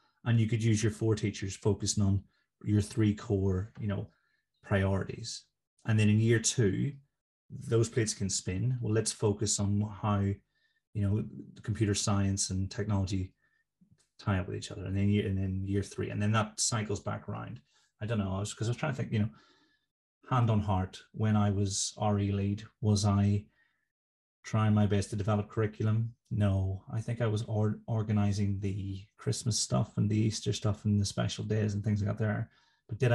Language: English